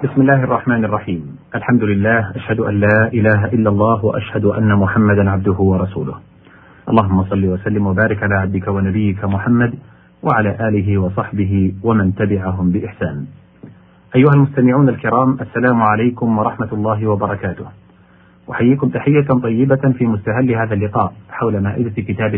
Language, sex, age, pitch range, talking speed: Arabic, male, 40-59, 100-130 Hz, 130 wpm